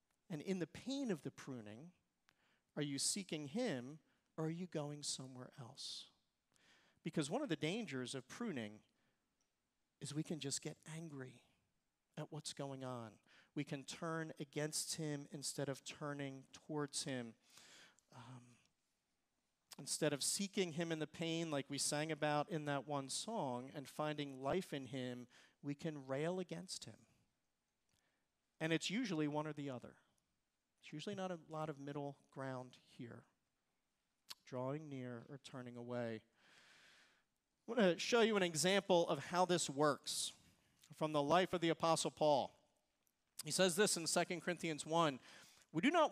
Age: 40-59